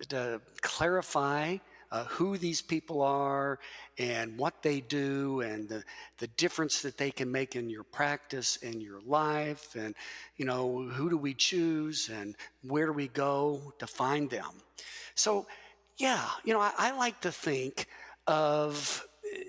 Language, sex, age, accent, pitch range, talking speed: English, male, 60-79, American, 140-185 Hz, 155 wpm